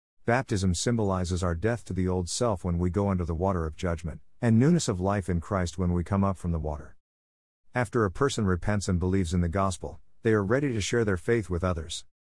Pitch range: 90-115 Hz